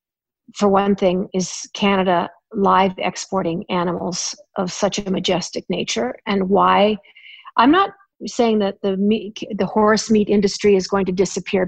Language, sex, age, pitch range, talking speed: English, female, 50-69, 195-215 Hz, 150 wpm